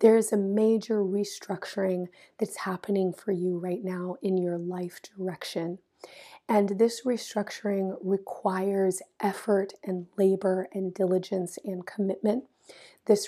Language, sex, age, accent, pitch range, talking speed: English, female, 30-49, American, 190-215 Hz, 120 wpm